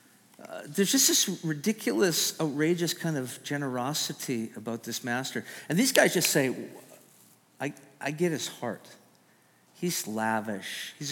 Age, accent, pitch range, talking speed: 50-69, American, 130-180 Hz, 130 wpm